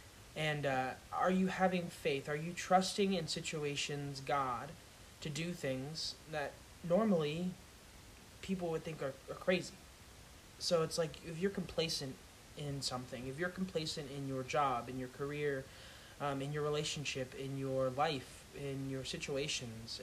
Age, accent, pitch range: 20-39, American, 135-175 Hz